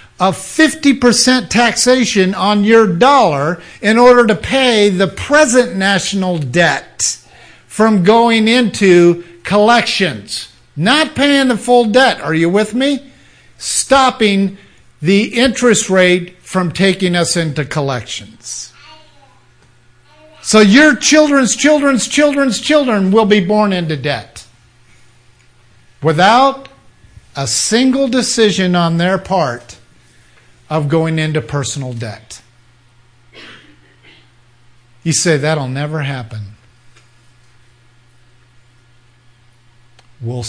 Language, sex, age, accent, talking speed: English, male, 50-69, American, 100 wpm